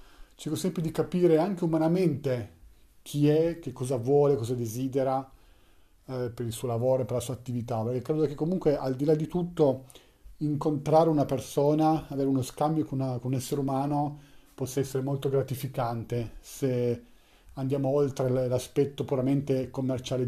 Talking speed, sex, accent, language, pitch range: 155 wpm, male, native, Italian, 125-160 Hz